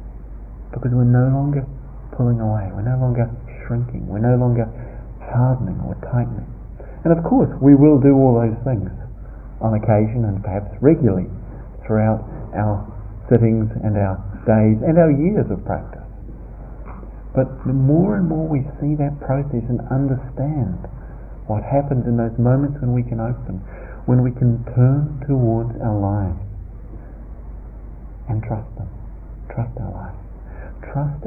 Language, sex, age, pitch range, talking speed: English, male, 50-69, 105-135 Hz, 145 wpm